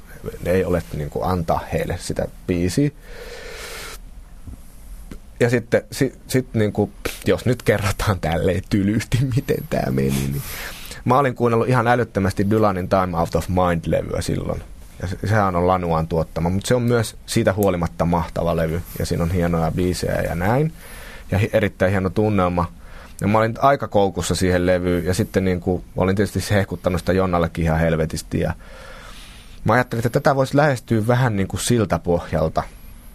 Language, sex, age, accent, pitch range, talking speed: Finnish, male, 30-49, native, 85-115 Hz, 160 wpm